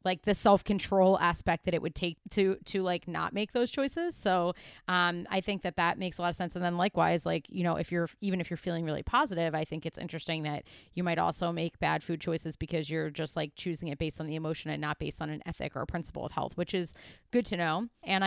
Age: 30-49